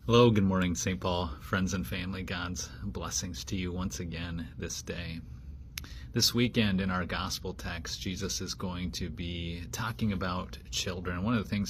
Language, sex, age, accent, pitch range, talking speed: English, male, 30-49, American, 75-95 Hz, 175 wpm